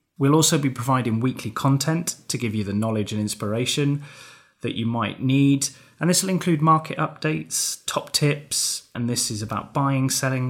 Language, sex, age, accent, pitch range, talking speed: English, male, 20-39, British, 115-135 Hz, 175 wpm